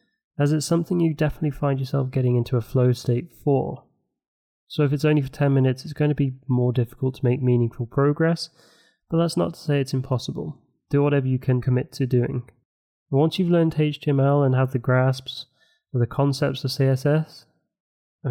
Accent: British